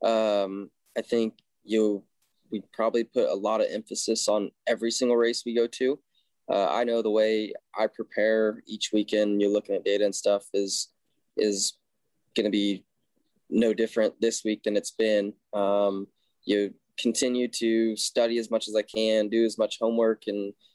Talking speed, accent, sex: 175 wpm, American, male